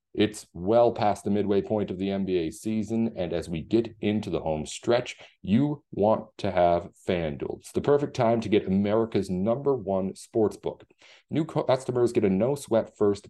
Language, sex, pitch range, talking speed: English, male, 95-120 Hz, 175 wpm